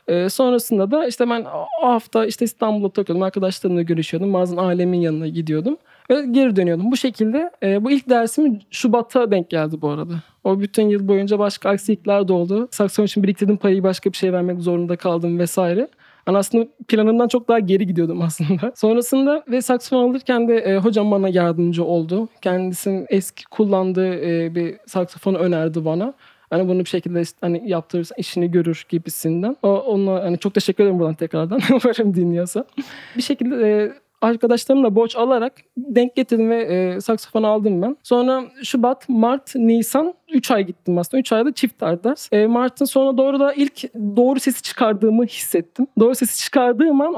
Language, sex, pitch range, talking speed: Turkish, male, 185-250 Hz, 170 wpm